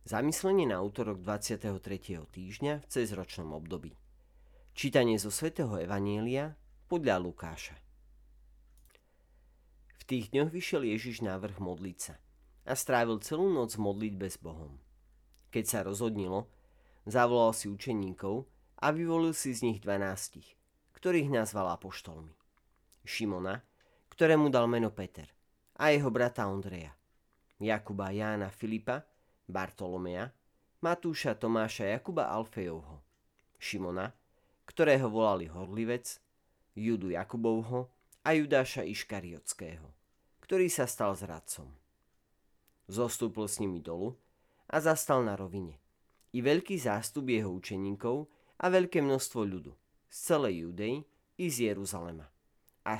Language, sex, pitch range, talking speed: Slovak, male, 85-120 Hz, 110 wpm